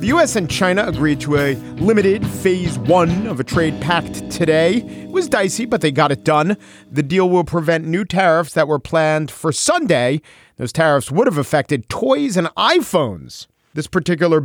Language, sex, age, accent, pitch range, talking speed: English, male, 40-59, American, 120-165 Hz, 185 wpm